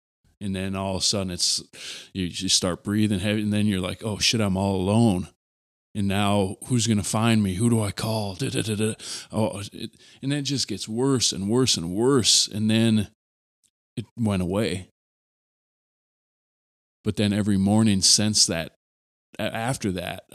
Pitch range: 95-115 Hz